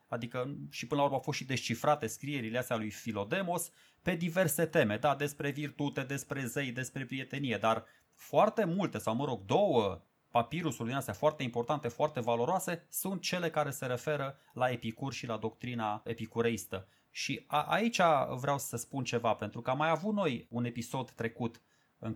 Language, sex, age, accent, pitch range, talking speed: Romanian, male, 30-49, native, 120-155 Hz, 175 wpm